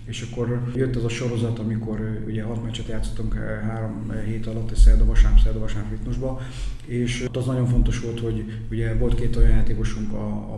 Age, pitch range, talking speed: 30-49, 110-120 Hz, 175 wpm